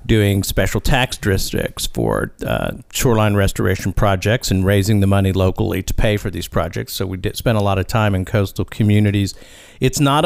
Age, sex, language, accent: 50-69, male, English, American